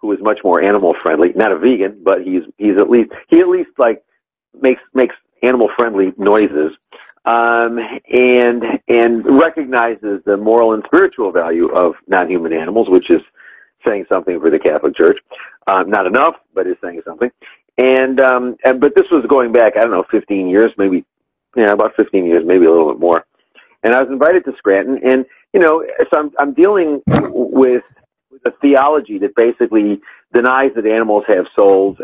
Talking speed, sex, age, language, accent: 180 wpm, male, 50-69, English, American